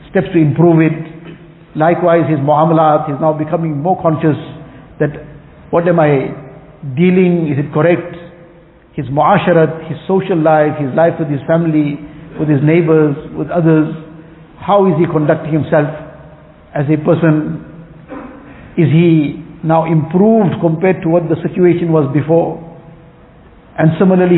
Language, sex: English, male